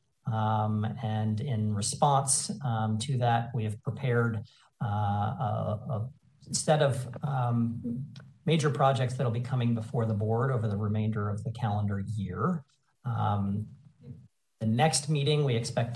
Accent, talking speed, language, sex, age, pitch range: American, 140 wpm, English, male, 40-59, 105-135 Hz